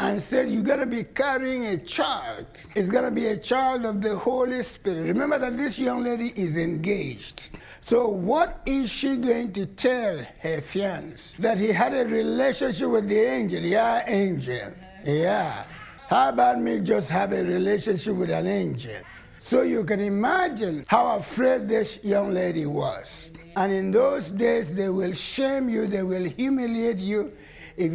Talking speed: 165 wpm